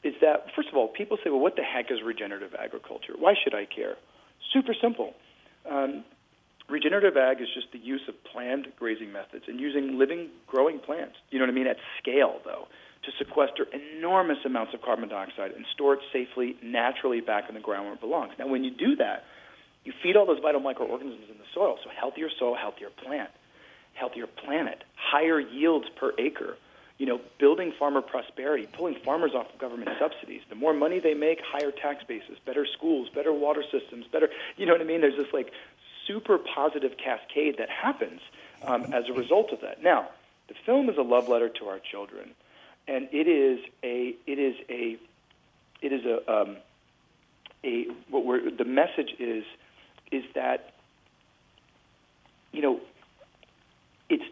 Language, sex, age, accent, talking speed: English, male, 40-59, American, 180 wpm